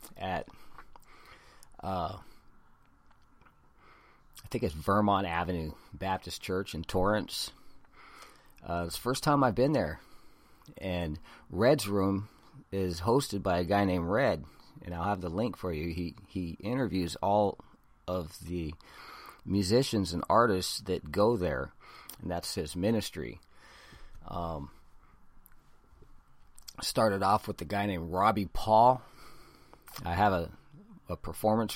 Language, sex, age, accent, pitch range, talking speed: English, male, 40-59, American, 85-105 Hz, 125 wpm